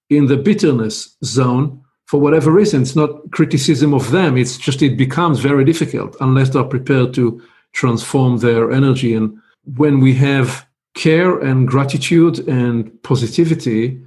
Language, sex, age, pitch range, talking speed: English, male, 50-69, 125-150 Hz, 145 wpm